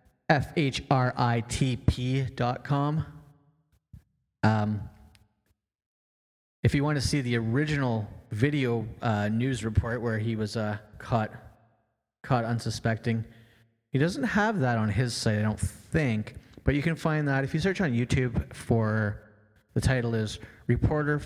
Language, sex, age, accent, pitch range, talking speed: English, male, 30-49, American, 110-130 Hz, 135 wpm